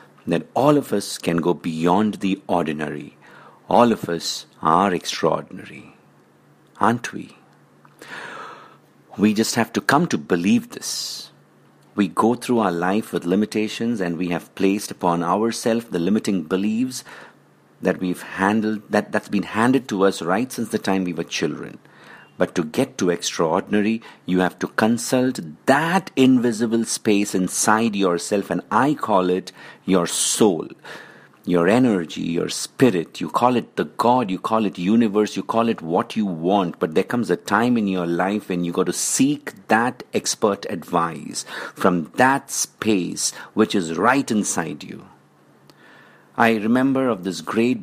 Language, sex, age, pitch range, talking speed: English, male, 50-69, 90-115 Hz, 155 wpm